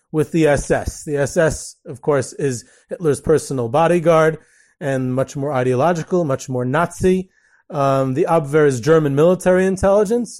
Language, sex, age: English, male, 30-49